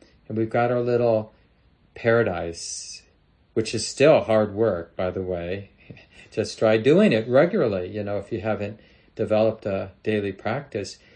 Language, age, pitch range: English, 40-59, 105-125 Hz